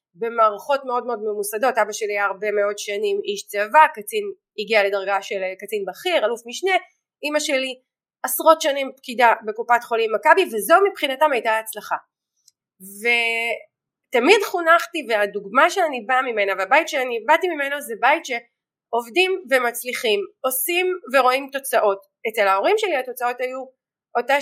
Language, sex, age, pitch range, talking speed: Hebrew, female, 20-39, 220-310 Hz, 135 wpm